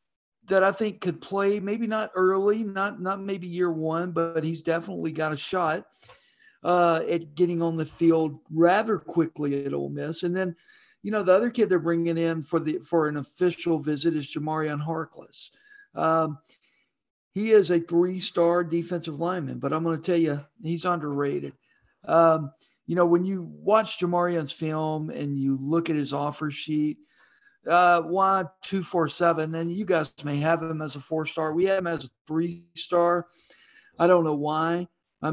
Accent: American